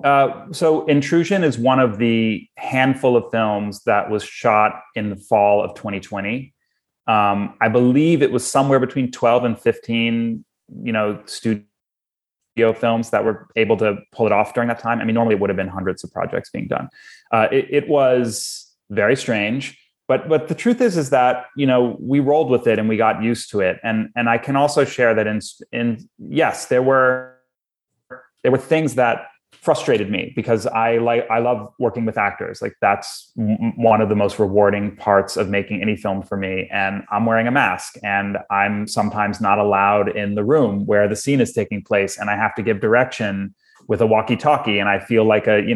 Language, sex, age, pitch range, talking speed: English, male, 30-49, 105-125 Hz, 200 wpm